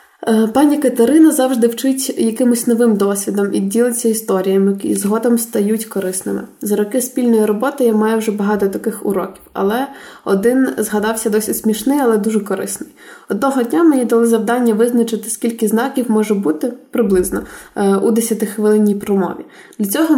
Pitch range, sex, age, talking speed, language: 210-240 Hz, female, 20-39, 145 wpm, Ukrainian